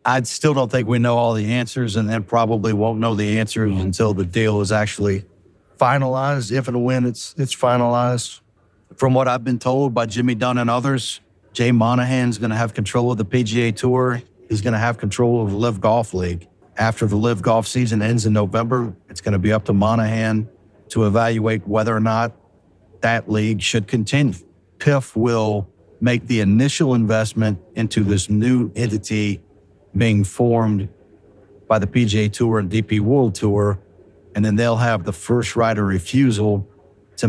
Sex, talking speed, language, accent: male, 180 wpm, English, American